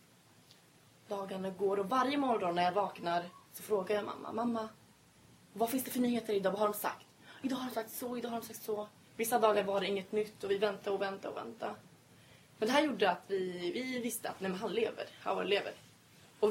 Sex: female